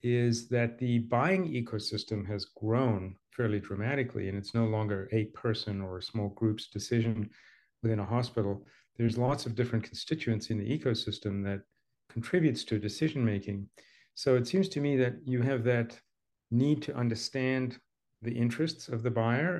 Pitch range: 110-125 Hz